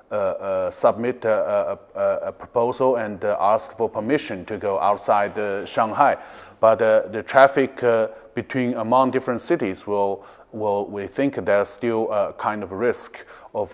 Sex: male